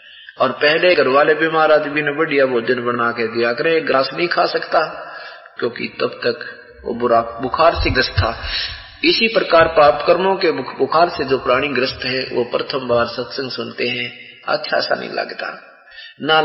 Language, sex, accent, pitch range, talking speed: Hindi, male, native, 125-155 Hz, 65 wpm